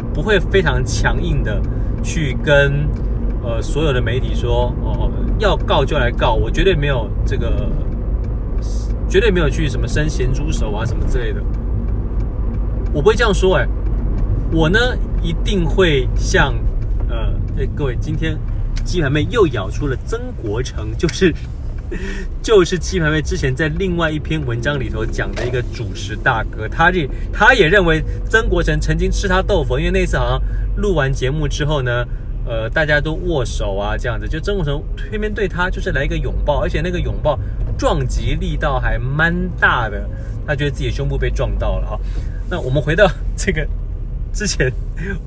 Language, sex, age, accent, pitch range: Chinese, male, 30-49, native, 110-150 Hz